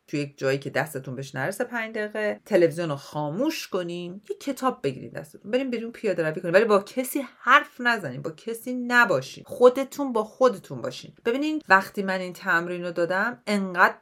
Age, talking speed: 40-59, 165 wpm